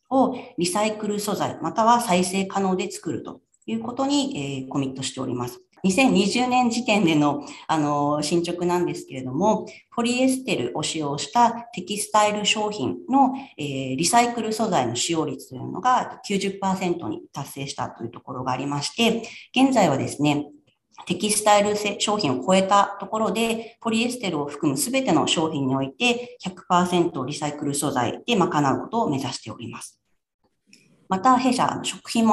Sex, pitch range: female, 145-225 Hz